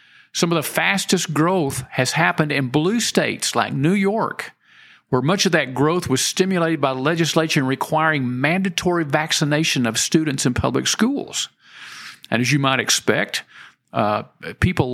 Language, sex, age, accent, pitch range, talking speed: English, male, 50-69, American, 135-175 Hz, 150 wpm